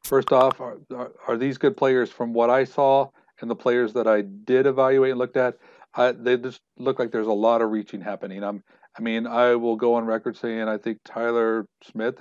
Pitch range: 115-150 Hz